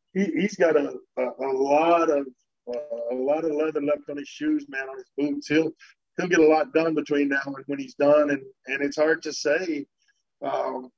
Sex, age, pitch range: male, 40-59, 140-175 Hz